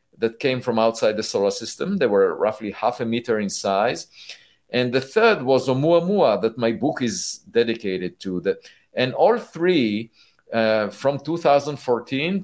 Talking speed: 155 wpm